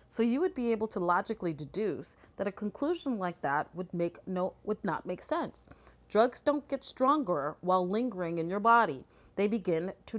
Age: 30-49